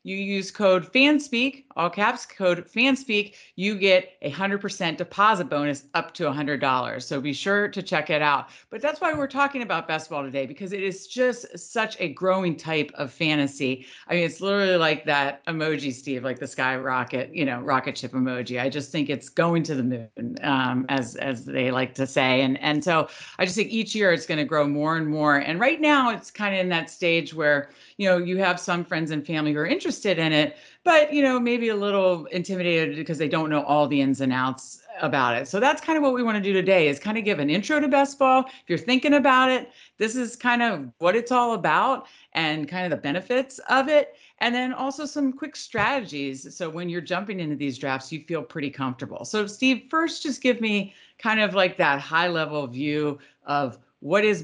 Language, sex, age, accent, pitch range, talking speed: English, female, 40-59, American, 145-220 Hz, 225 wpm